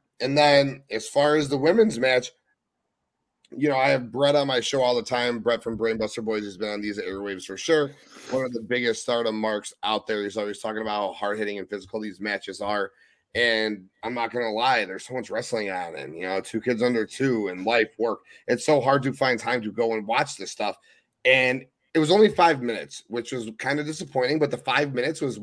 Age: 30-49